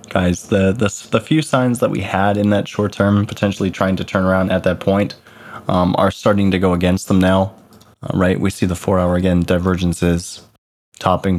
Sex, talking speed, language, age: male, 195 wpm, English, 20-39